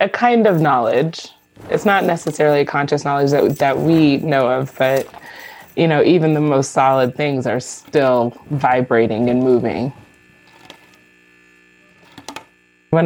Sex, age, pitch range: female, 20-39, 130-150 Hz